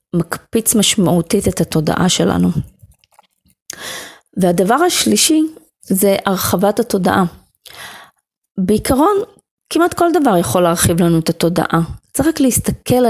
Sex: female